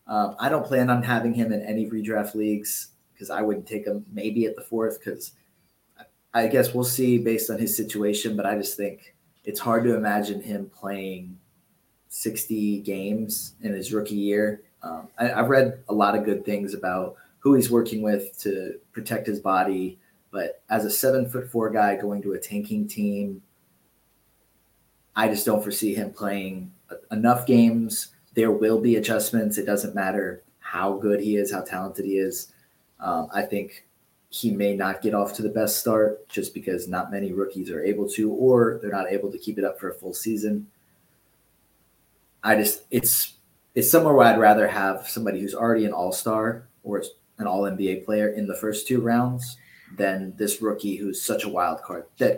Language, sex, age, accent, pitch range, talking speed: English, male, 20-39, American, 100-115 Hz, 185 wpm